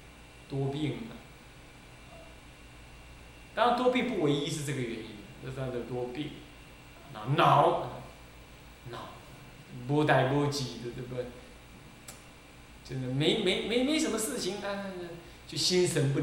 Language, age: Chinese, 20-39